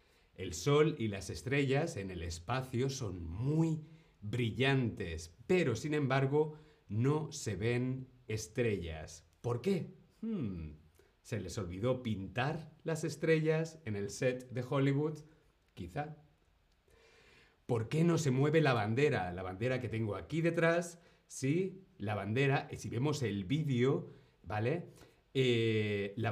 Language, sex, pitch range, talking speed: Spanish, male, 105-150 Hz, 125 wpm